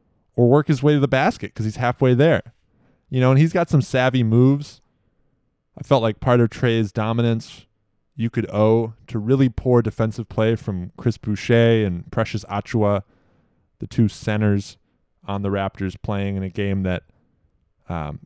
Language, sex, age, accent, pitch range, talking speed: English, male, 20-39, American, 105-140 Hz, 170 wpm